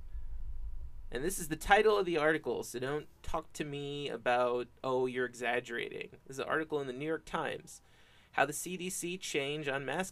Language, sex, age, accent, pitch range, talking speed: English, male, 30-49, American, 120-175 Hz, 190 wpm